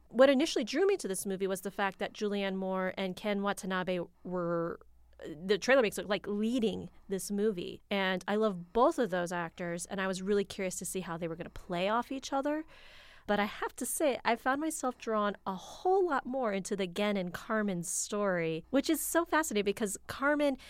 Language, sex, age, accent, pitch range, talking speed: English, female, 30-49, American, 195-255 Hz, 210 wpm